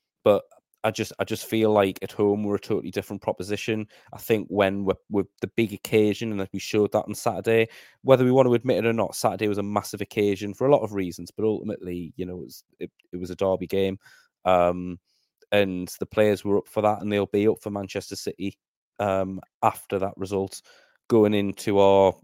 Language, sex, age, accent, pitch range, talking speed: English, male, 20-39, British, 90-105 Hz, 215 wpm